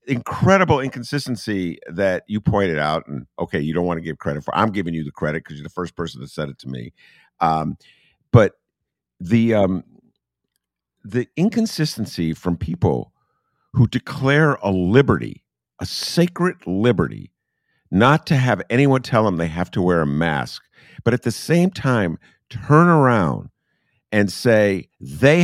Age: 50-69